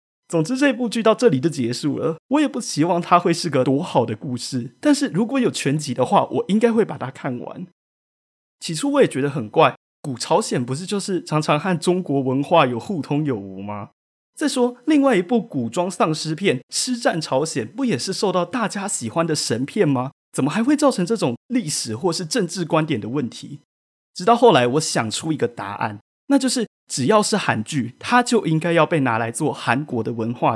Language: Chinese